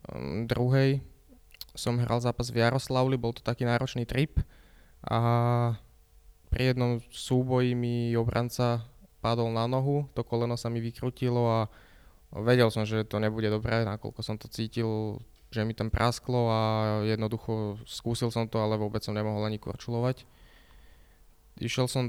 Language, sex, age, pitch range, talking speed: Slovak, male, 20-39, 110-120 Hz, 145 wpm